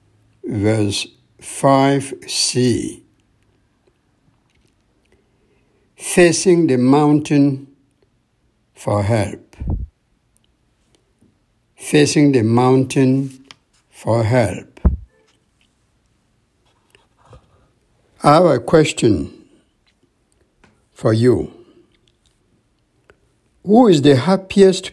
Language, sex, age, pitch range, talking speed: English, male, 60-79, 120-155 Hz, 55 wpm